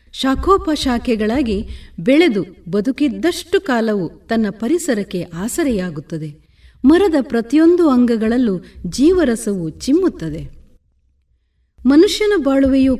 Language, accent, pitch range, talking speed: Kannada, native, 195-290 Hz, 70 wpm